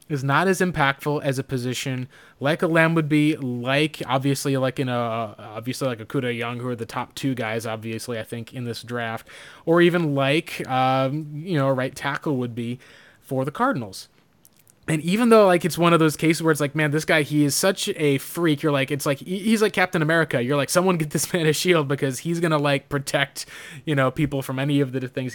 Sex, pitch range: male, 130-165 Hz